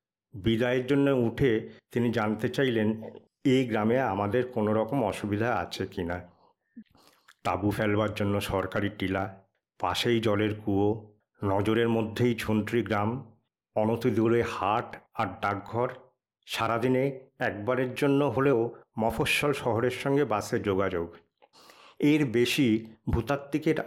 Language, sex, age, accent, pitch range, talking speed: Bengali, male, 60-79, native, 105-125 Hz, 110 wpm